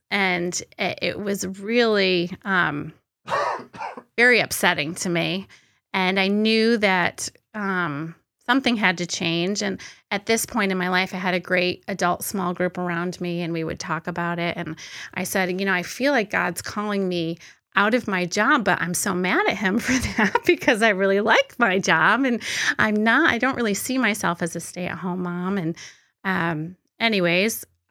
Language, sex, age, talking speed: English, female, 30-49, 180 wpm